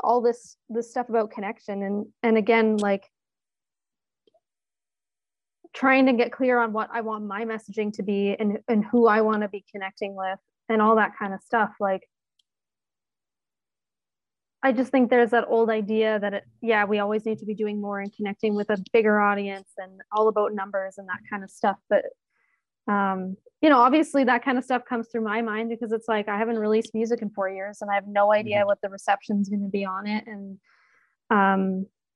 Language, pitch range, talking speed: English, 200-230 Hz, 200 wpm